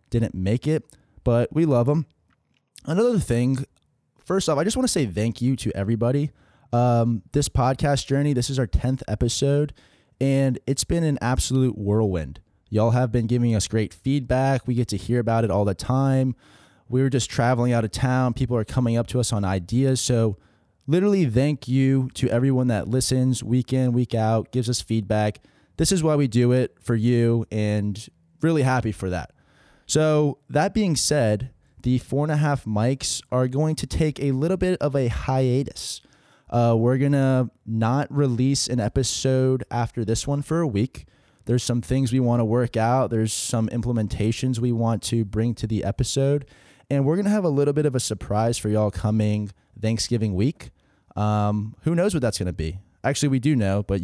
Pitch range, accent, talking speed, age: 110-135 Hz, American, 195 wpm, 20-39